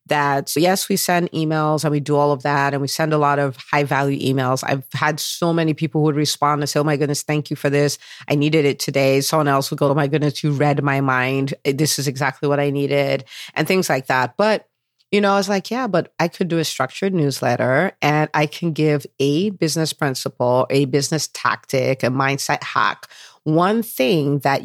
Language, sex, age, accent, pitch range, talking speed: English, female, 40-59, American, 140-165 Hz, 225 wpm